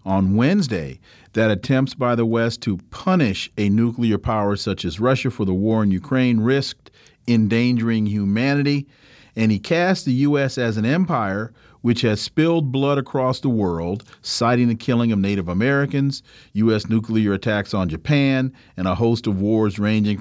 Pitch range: 110-140 Hz